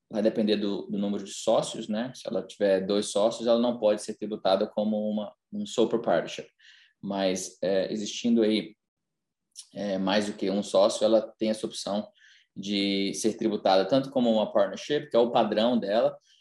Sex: male